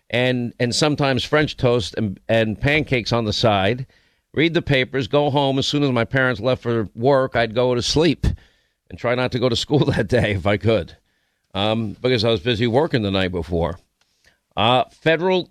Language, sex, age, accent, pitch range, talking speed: English, male, 50-69, American, 115-145 Hz, 195 wpm